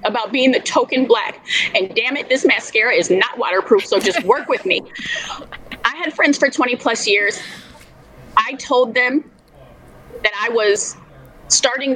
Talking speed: 160 wpm